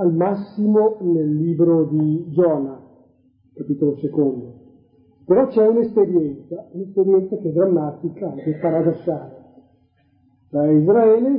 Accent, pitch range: native, 150-200 Hz